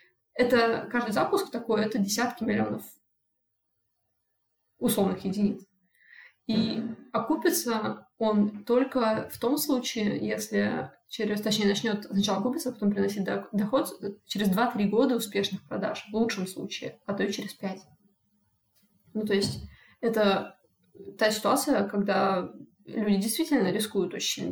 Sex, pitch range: female, 195-235 Hz